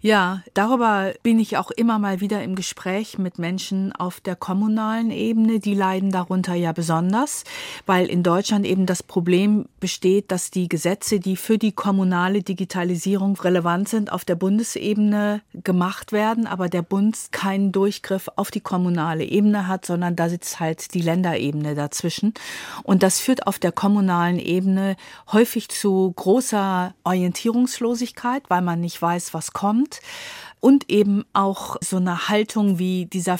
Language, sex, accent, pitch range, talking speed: German, female, German, 175-210 Hz, 155 wpm